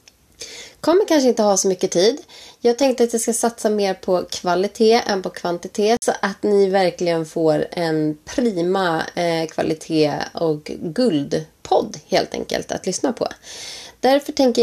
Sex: female